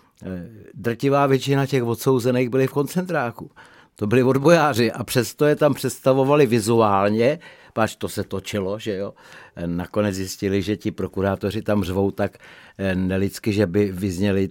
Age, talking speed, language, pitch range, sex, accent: 60-79, 140 wpm, Czech, 100-130 Hz, male, native